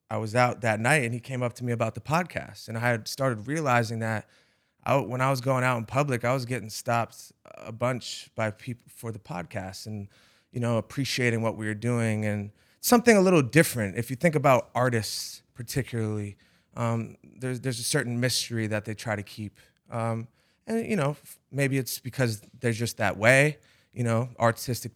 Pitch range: 105-125 Hz